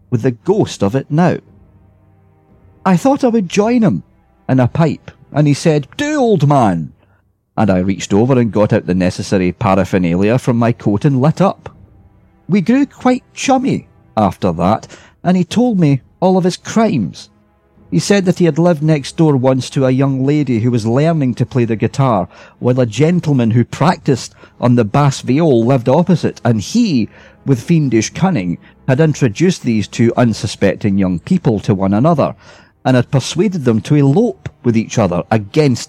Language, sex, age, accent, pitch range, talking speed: English, male, 40-59, British, 100-150 Hz, 180 wpm